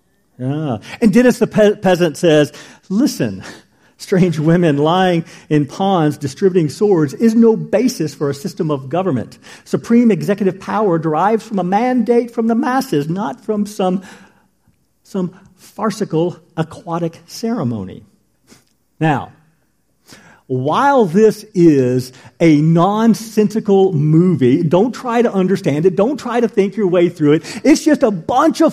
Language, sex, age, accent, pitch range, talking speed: English, male, 50-69, American, 170-265 Hz, 135 wpm